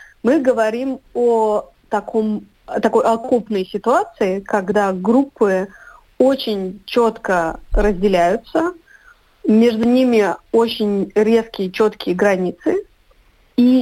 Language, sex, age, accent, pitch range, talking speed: Russian, female, 30-49, native, 200-240 Hz, 85 wpm